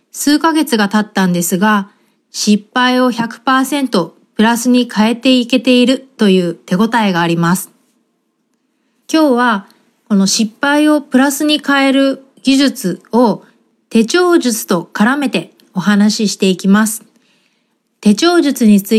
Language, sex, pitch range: Japanese, female, 205-270 Hz